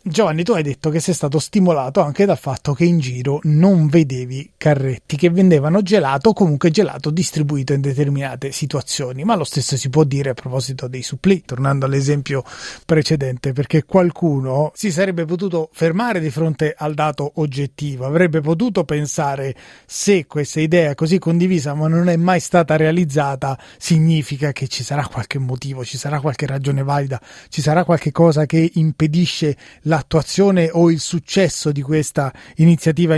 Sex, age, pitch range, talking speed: male, 30-49, 140-170 Hz, 165 wpm